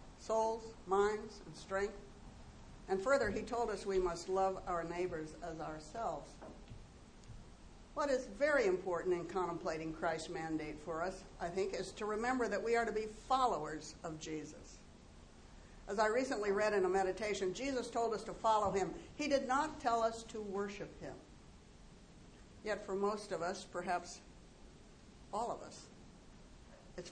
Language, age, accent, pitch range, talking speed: English, 60-79, American, 165-215 Hz, 155 wpm